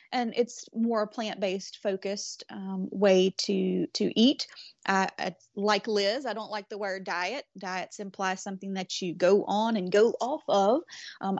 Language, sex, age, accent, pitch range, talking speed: English, female, 30-49, American, 190-225 Hz, 175 wpm